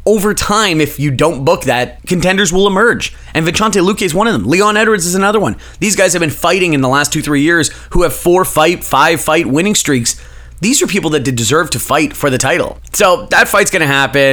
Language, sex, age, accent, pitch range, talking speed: English, male, 30-49, American, 115-155 Hz, 245 wpm